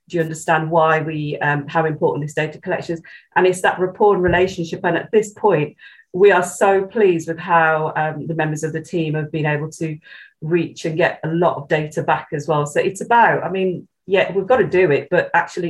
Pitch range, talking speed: 160-185 Hz, 235 wpm